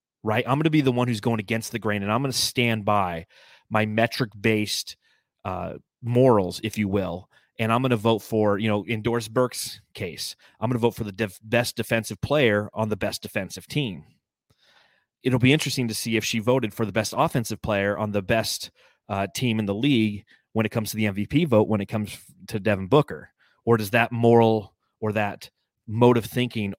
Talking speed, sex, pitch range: 215 wpm, male, 105-125 Hz